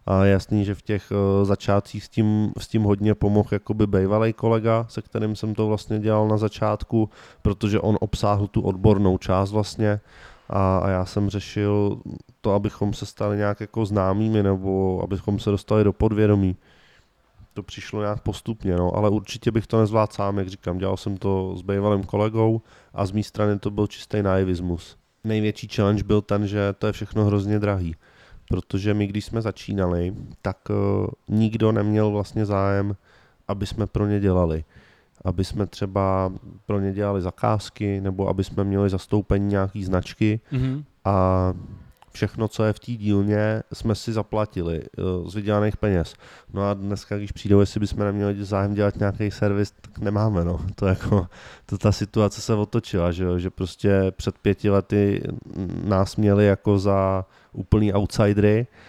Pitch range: 95-105 Hz